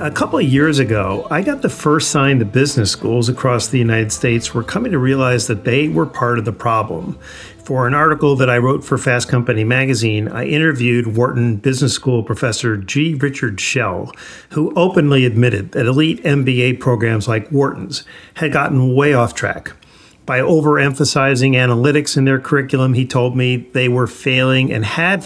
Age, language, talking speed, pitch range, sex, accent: 50-69, English, 180 wpm, 120-150 Hz, male, American